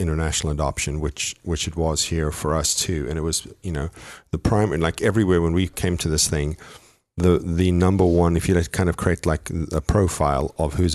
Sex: male